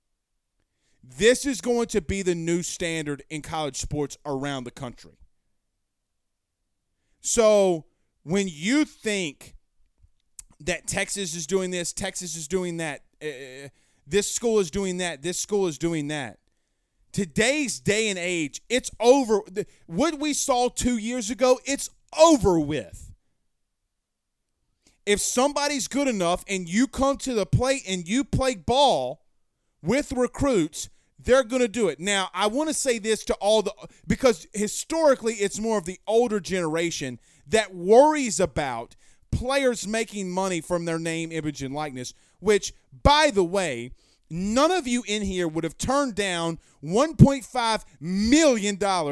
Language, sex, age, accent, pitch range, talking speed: English, male, 30-49, American, 160-240 Hz, 145 wpm